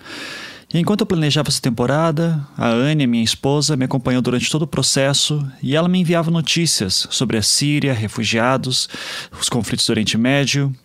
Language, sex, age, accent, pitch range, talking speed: Portuguese, male, 30-49, Brazilian, 120-155 Hz, 160 wpm